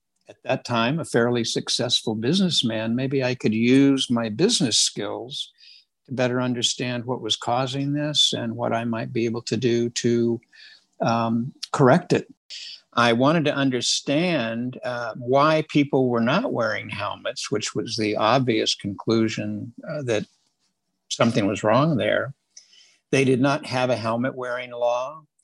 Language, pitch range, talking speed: Swedish, 115-140 Hz, 150 wpm